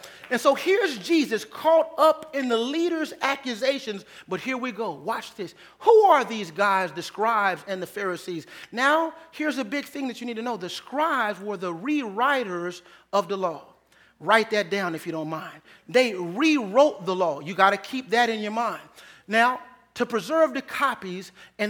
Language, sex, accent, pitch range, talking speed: English, male, American, 205-275 Hz, 190 wpm